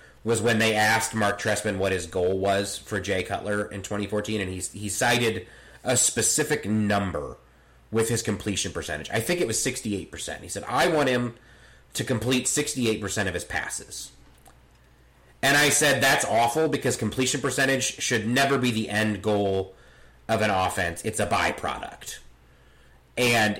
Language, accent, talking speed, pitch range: English, American, 160 wpm, 105-140 Hz